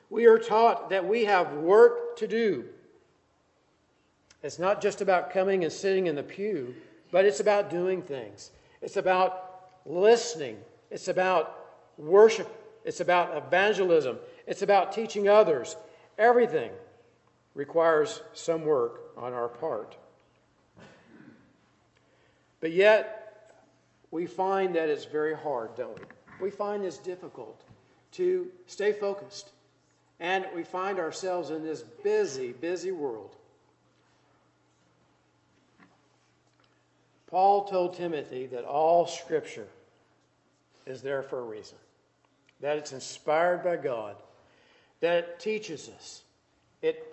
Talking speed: 115 wpm